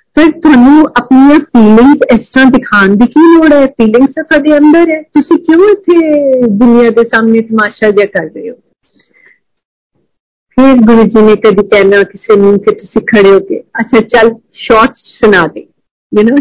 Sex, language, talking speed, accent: female, Hindi, 155 wpm, native